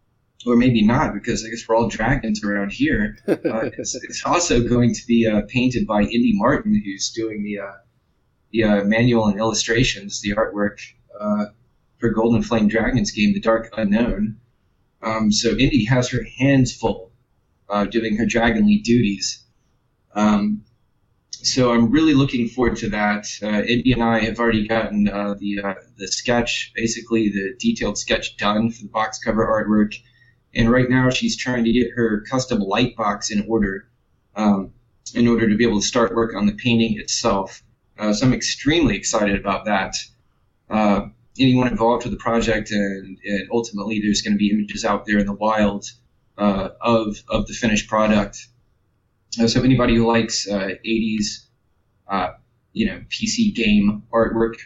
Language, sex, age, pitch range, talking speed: English, male, 20-39, 105-120 Hz, 170 wpm